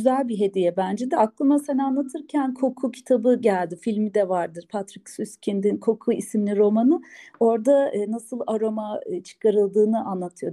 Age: 40-59